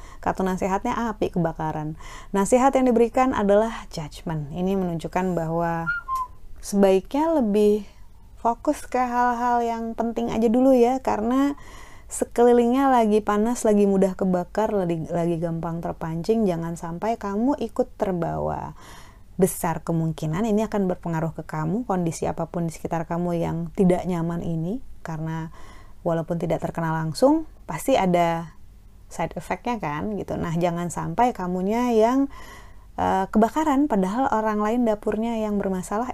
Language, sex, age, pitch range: Indonesian, female, 30-49, 170-230 Hz